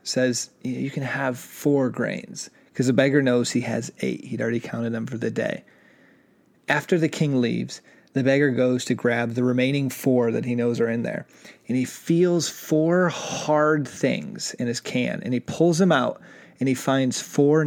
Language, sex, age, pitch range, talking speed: English, male, 30-49, 125-155 Hz, 190 wpm